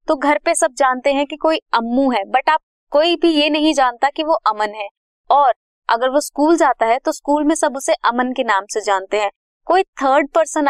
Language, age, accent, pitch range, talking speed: Hindi, 20-39, native, 225-300 Hz, 230 wpm